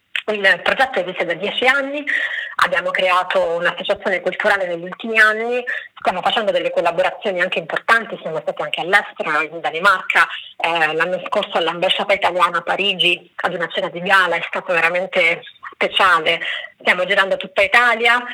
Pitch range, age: 180-225 Hz, 30-49